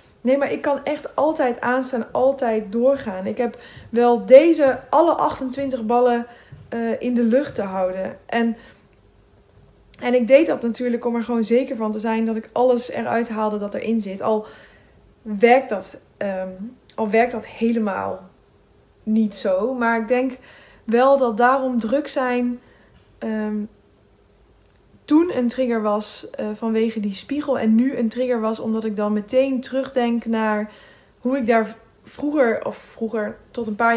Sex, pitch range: female, 220-255 Hz